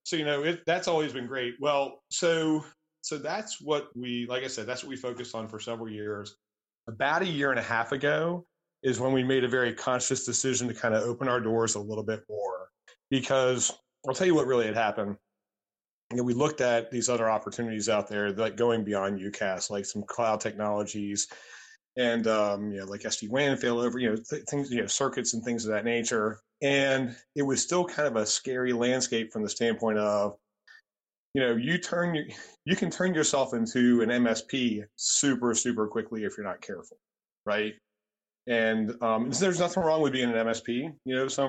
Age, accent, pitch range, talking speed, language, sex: 30-49, American, 110-135 Hz, 200 wpm, English, male